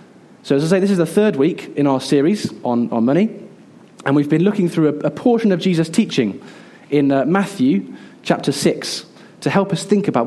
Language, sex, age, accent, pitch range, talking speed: English, male, 20-39, British, 130-170 Hz, 210 wpm